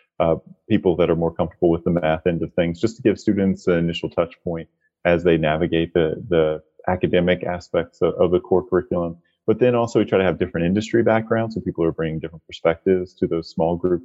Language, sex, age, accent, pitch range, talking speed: English, male, 30-49, American, 85-105 Hz, 220 wpm